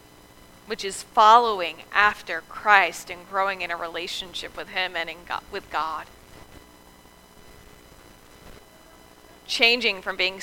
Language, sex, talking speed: English, female, 105 wpm